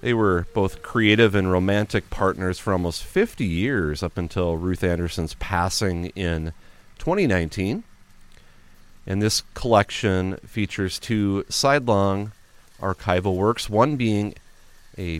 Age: 30-49